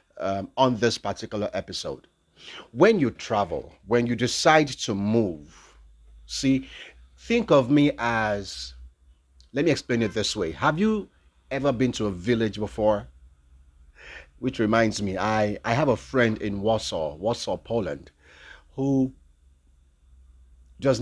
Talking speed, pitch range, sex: 130 wpm, 100-130 Hz, male